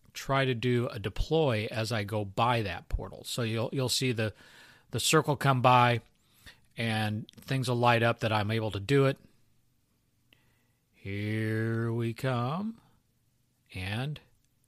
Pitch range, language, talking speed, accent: 115-135 Hz, English, 145 wpm, American